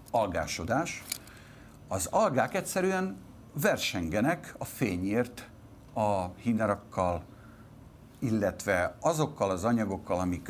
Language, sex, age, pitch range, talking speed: Hungarian, male, 50-69, 95-130 Hz, 80 wpm